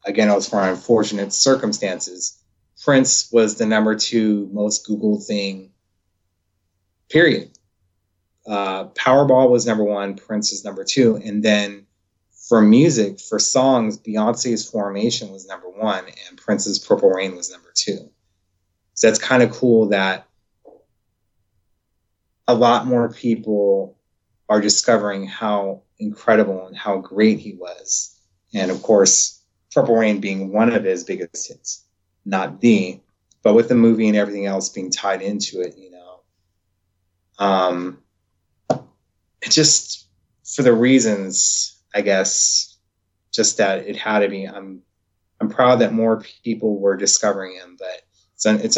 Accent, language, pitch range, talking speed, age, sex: American, English, 95-110 Hz, 140 wpm, 30-49, male